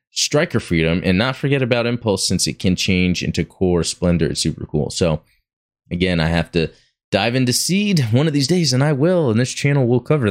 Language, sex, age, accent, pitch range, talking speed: English, male, 20-39, American, 85-125 Hz, 215 wpm